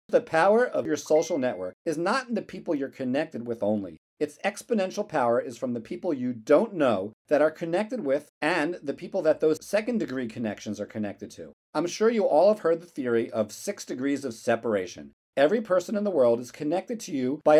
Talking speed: 215 wpm